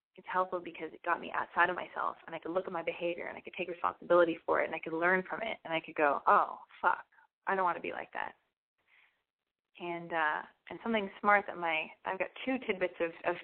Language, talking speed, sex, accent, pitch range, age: English, 245 wpm, female, American, 170-230 Hz, 20-39